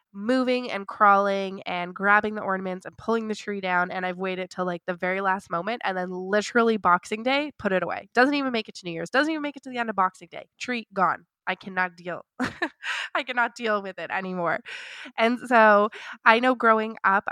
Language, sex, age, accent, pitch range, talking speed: English, female, 20-39, American, 185-240 Hz, 220 wpm